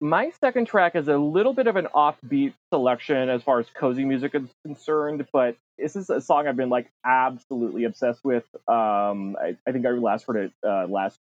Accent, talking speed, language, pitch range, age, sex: American, 210 wpm, English, 115-160 Hz, 30-49, male